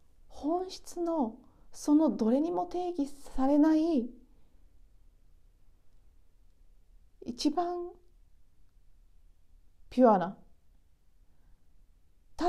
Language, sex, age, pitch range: Japanese, female, 40-59, 175-260 Hz